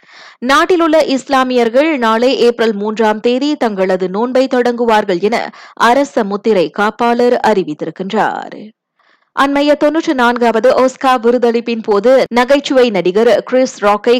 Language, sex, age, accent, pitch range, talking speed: Tamil, female, 20-39, native, 195-245 Hz, 100 wpm